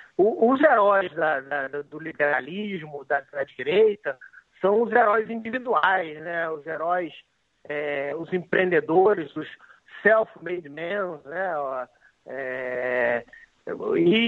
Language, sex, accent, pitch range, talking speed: Portuguese, male, Brazilian, 175-250 Hz, 100 wpm